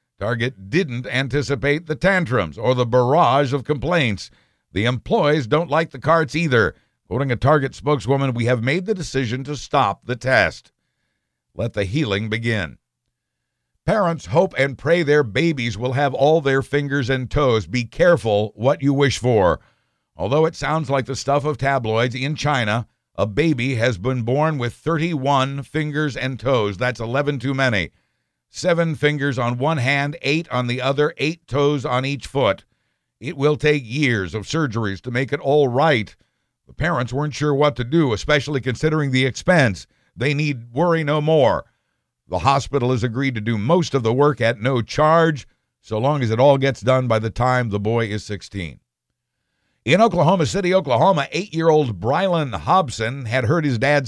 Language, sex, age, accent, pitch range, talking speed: English, male, 60-79, American, 120-150 Hz, 175 wpm